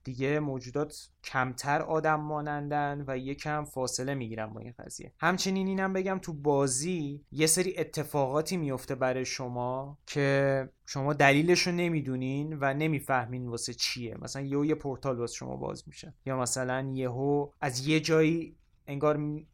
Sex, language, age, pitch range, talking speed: male, Persian, 20-39, 130-160 Hz, 155 wpm